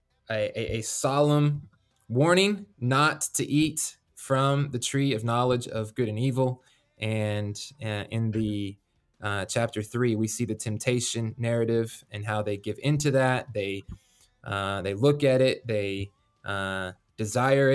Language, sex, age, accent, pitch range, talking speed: English, male, 20-39, American, 110-135 Hz, 150 wpm